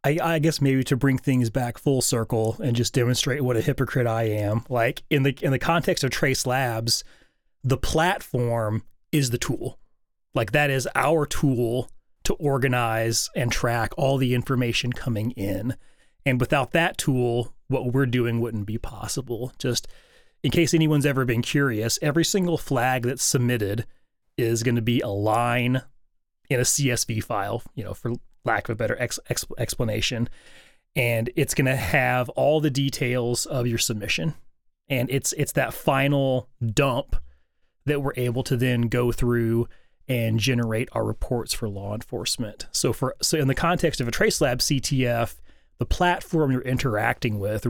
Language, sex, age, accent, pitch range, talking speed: English, male, 30-49, American, 110-135 Hz, 165 wpm